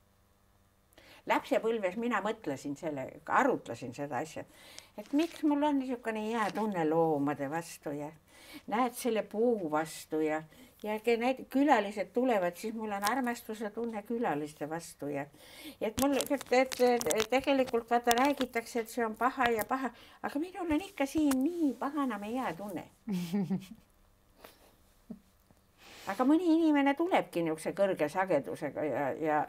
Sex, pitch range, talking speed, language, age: female, 150-245 Hz, 140 wpm, English, 60-79